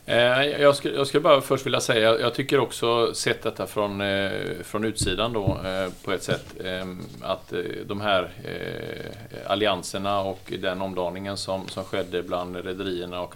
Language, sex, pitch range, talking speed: Swedish, male, 90-110 Hz, 140 wpm